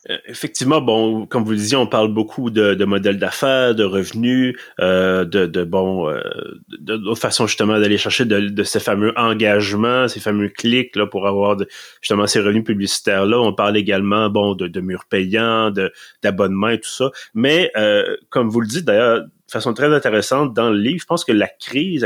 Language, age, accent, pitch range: French, 30-49, Canadian, 105-130 Hz